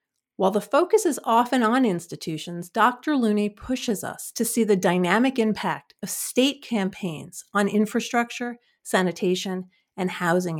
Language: English